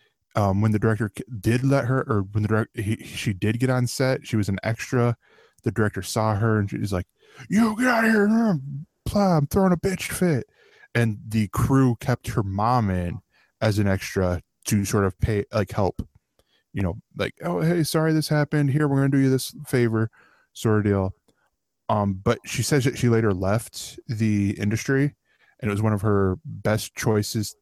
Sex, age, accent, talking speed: male, 10-29, American, 195 wpm